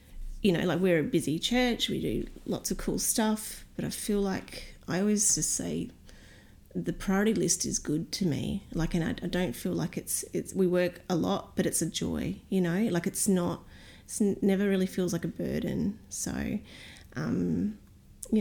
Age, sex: 30-49, female